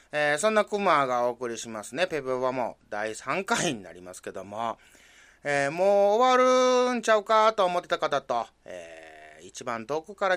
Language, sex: Japanese, male